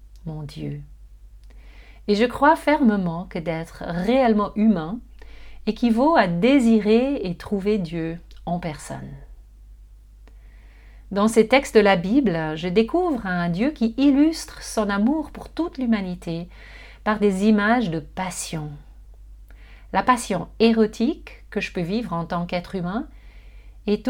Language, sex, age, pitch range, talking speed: French, female, 40-59, 175-245 Hz, 130 wpm